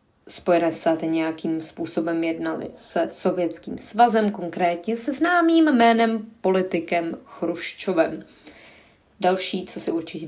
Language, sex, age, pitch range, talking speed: Czech, female, 20-39, 165-185 Hz, 105 wpm